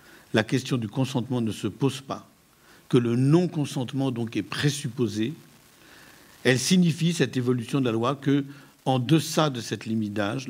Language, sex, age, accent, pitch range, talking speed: French, male, 50-69, French, 115-140 Hz, 160 wpm